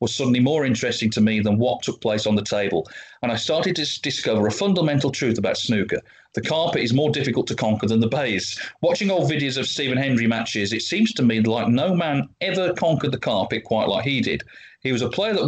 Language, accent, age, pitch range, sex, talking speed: English, British, 40-59, 110-135 Hz, male, 235 wpm